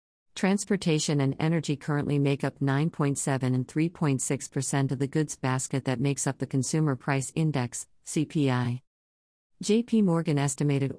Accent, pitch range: American, 130-155 Hz